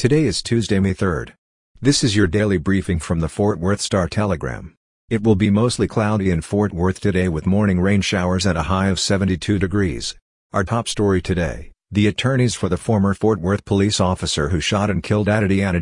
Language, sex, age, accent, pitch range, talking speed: English, male, 50-69, American, 90-105 Hz, 195 wpm